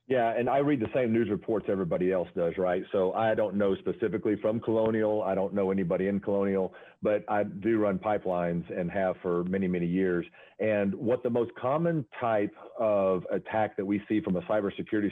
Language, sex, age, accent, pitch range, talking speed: English, male, 40-59, American, 105-140 Hz, 200 wpm